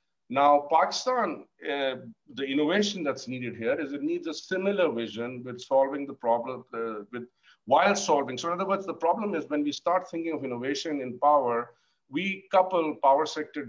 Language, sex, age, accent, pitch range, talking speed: English, male, 50-69, Indian, 125-180 Hz, 180 wpm